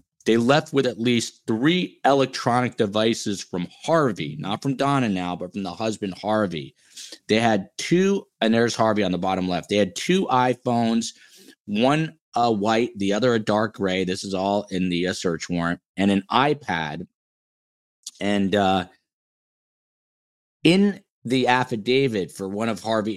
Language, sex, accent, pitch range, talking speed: English, male, American, 95-120 Hz, 155 wpm